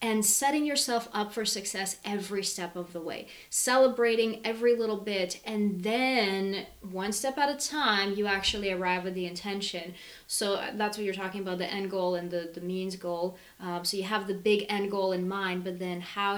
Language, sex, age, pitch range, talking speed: English, female, 20-39, 180-215 Hz, 200 wpm